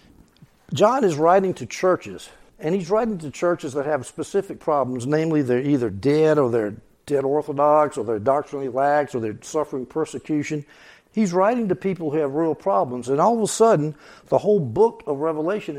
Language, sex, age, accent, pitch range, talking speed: English, male, 60-79, American, 140-180 Hz, 180 wpm